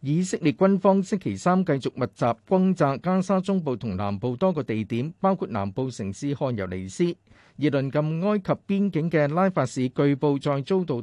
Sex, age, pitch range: male, 50-69, 120-175 Hz